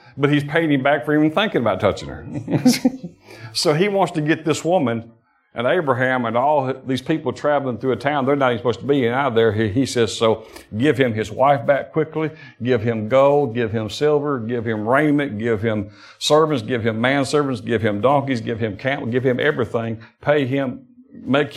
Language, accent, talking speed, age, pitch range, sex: English, American, 200 wpm, 50-69, 110-150 Hz, male